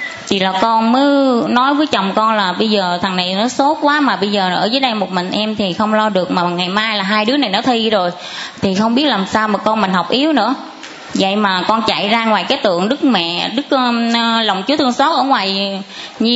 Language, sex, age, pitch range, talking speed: Vietnamese, female, 20-39, 205-270 Hz, 250 wpm